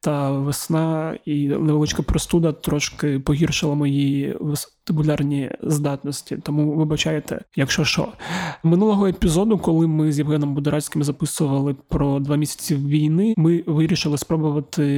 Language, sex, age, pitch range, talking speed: Ukrainian, male, 20-39, 145-160 Hz, 115 wpm